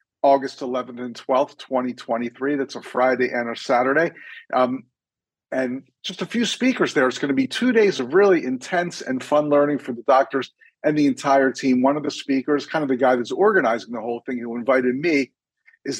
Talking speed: 205 wpm